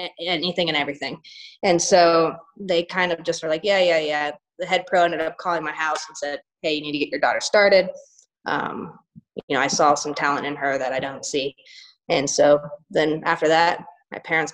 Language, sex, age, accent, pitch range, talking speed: English, female, 20-39, American, 150-185 Hz, 215 wpm